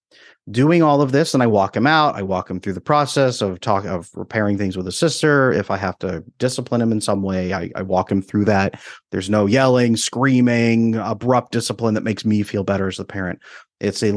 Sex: male